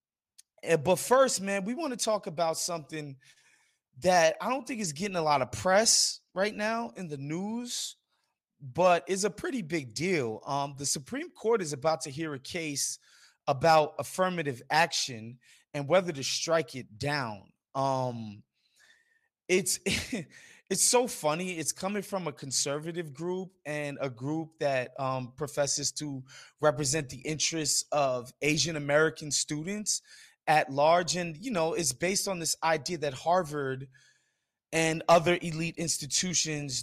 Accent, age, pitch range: American, 20-39, 135-175 Hz